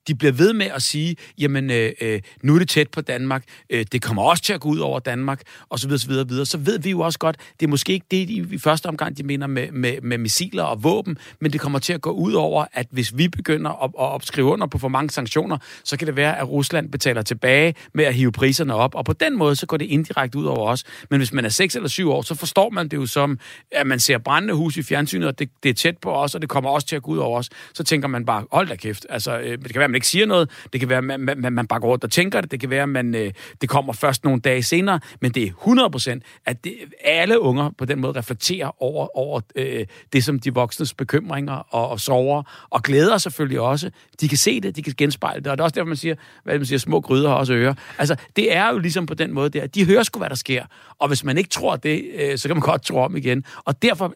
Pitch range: 130-160 Hz